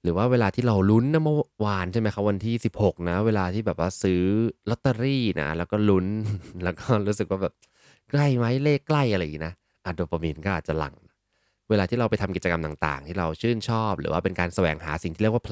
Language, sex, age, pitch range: Thai, male, 20-39, 85-115 Hz